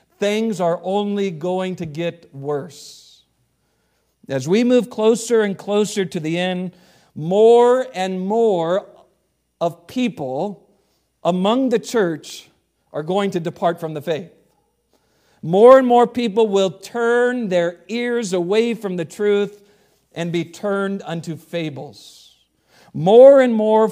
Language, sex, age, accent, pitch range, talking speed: English, male, 50-69, American, 170-220 Hz, 130 wpm